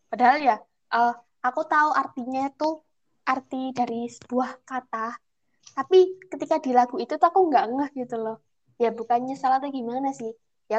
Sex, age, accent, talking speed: female, 10-29, native, 155 wpm